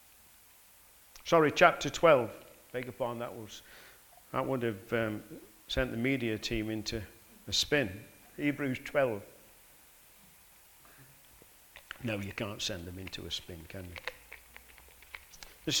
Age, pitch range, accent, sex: 50-69, 115-145 Hz, British, male